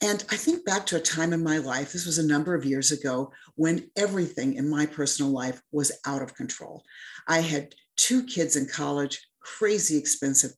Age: 50-69